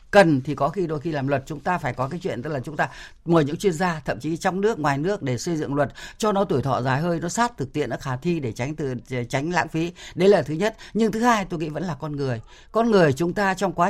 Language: Vietnamese